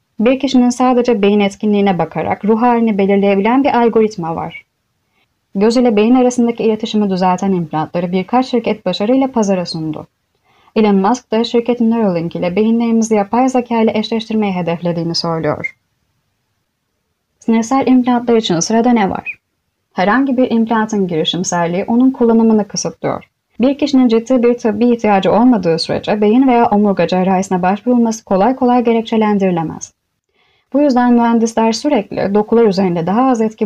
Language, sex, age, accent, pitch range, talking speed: Turkish, female, 30-49, native, 190-240 Hz, 130 wpm